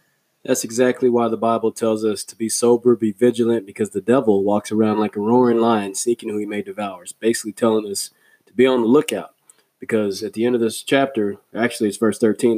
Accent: American